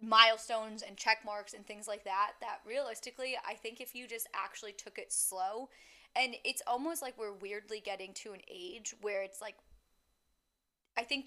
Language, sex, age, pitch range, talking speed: English, female, 20-39, 195-245 Hz, 180 wpm